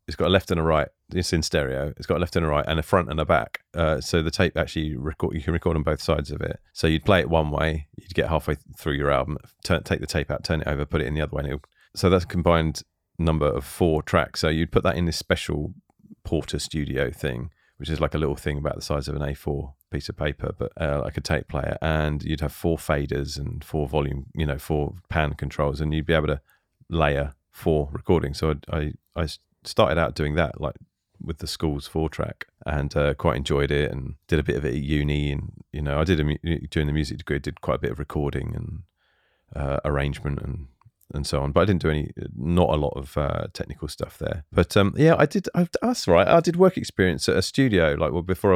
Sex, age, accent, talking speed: male, 30-49, British, 255 wpm